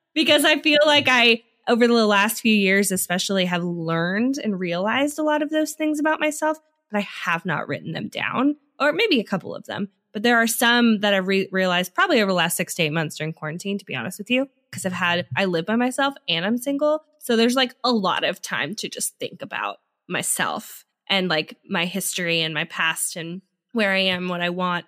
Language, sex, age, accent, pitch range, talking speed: English, female, 20-39, American, 175-240 Hz, 225 wpm